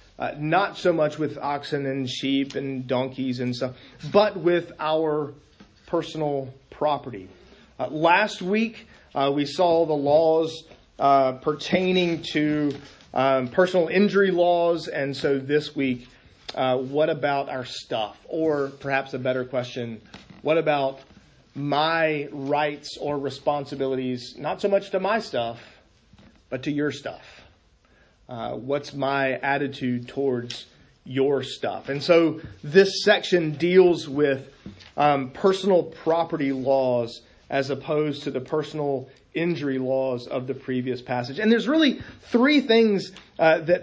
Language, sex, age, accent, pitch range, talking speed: English, male, 40-59, American, 135-175 Hz, 135 wpm